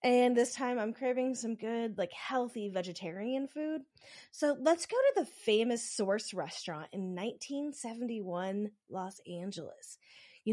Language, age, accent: English, 30-49, American